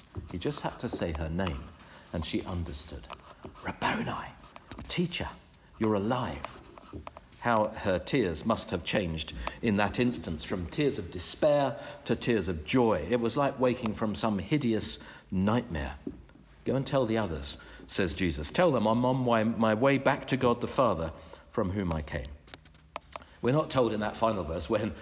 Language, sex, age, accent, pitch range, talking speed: English, male, 60-79, British, 90-130 Hz, 165 wpm